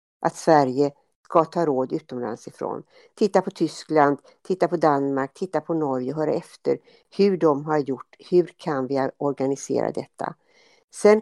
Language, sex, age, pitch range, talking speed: Swedish, female, 60-79, 145-185 Hz, 155 wpm